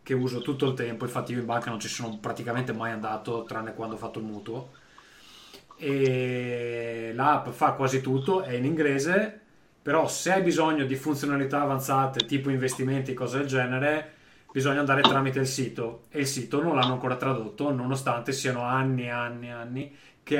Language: Italian